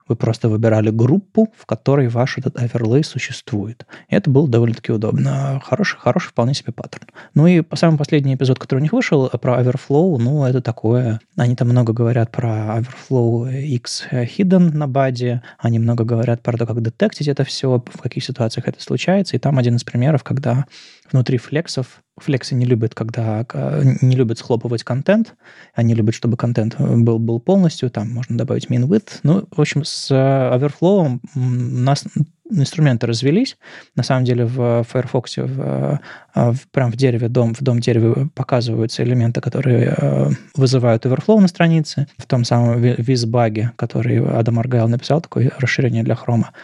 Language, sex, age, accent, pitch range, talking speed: Russian, male, 20-39, native, 120-145 Hz, 165 wpm